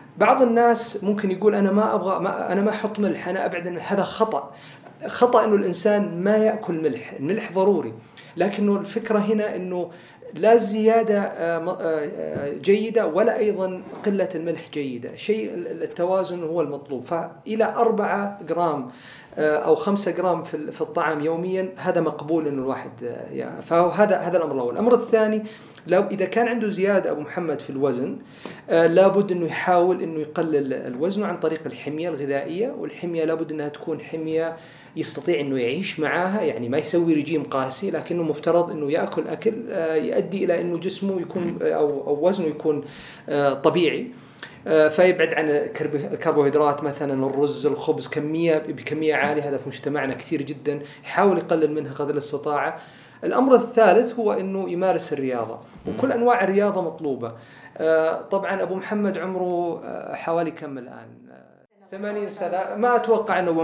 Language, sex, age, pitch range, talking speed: Arabic, male, 40-59, 150-200 Hz, 140 wpm